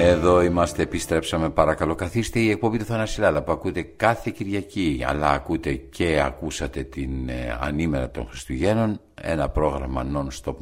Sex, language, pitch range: male, Greek, 80-100 Hz